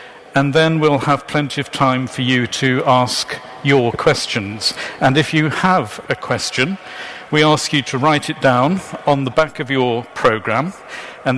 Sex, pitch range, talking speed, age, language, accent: male, 125-150 Hz, 175 wpm, 50-69, English, British